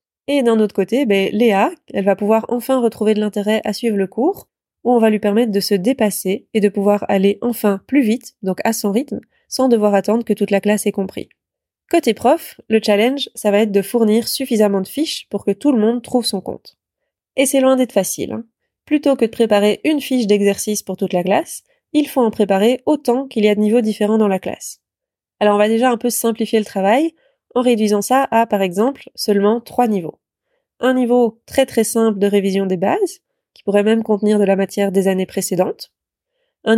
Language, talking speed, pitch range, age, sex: French, 220 wpm, 205-245 Hz, 20-39, female